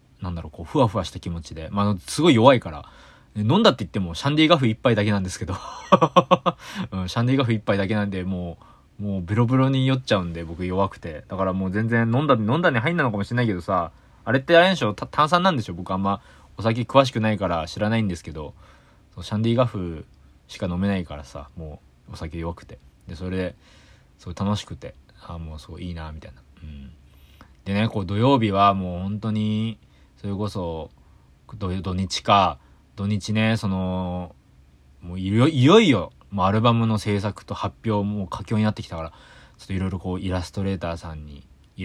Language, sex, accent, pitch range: Japanese, male, native, 85-110 Hz